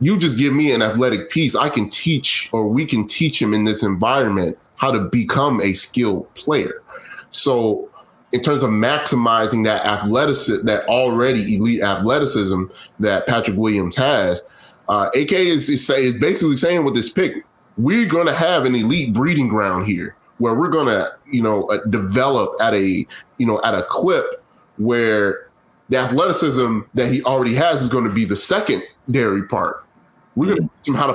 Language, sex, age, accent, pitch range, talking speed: English, male, 20-39, American, 105-150 Hz, 180 wpm